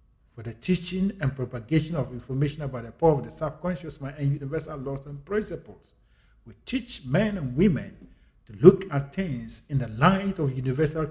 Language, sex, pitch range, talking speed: English, male, 125-165 Hz, 180 wpm